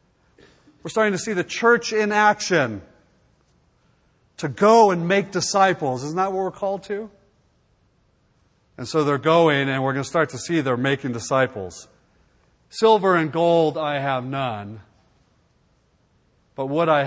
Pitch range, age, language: 120-170 Hz, 40-59, English